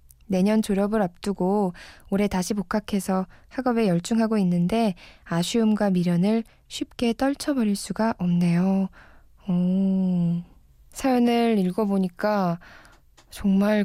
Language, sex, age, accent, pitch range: Korean, female, 20-39, native, 170-205 Hz